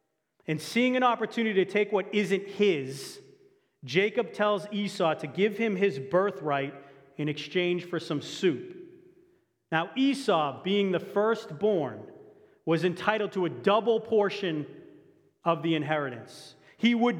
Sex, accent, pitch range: male, American, 155-215 Hz